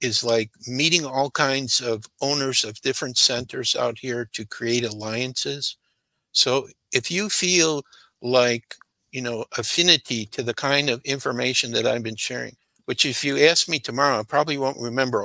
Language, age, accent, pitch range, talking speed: English, 60-79, American, 120-145 Hz, 165 wpm